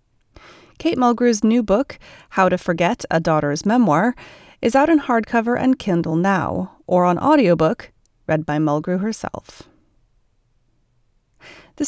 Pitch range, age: 180-255 Hz, 30-49